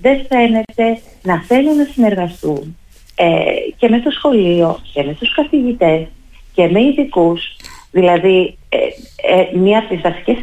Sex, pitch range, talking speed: female, 160-225 Hz, 145 wpm